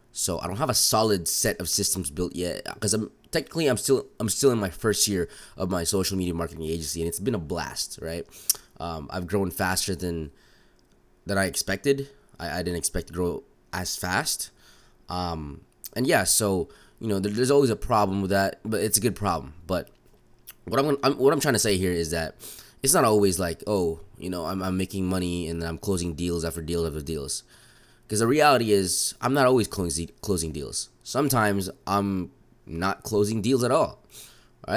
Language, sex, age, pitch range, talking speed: English, male, 20-39, 90-110 Hz, 205 wpm